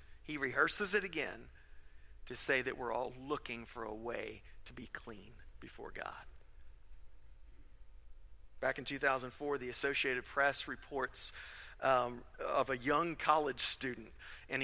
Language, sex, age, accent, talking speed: English, male, 50-69, American, 130 wpm